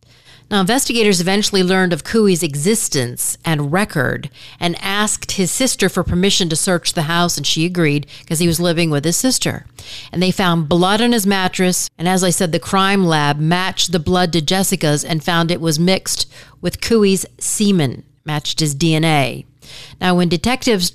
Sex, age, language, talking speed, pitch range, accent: female, 40-59, English, 180 wpm, 150-200 Hz, American